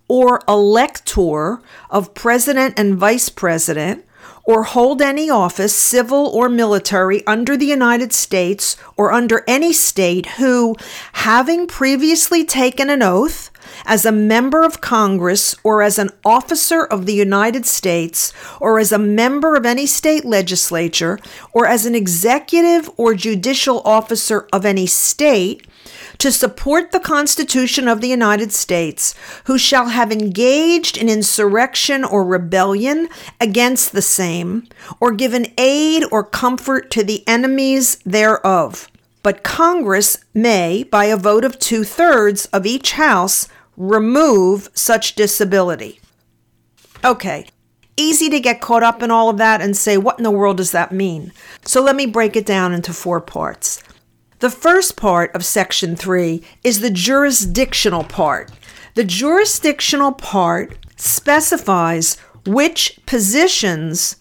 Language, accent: English, American